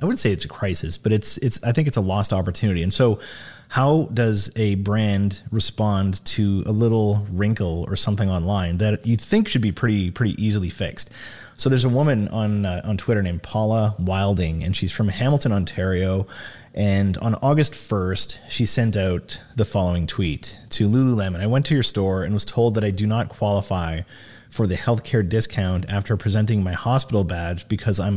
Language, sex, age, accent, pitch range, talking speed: English, male, 30-49, American, 95-115 Hz, 195 wpm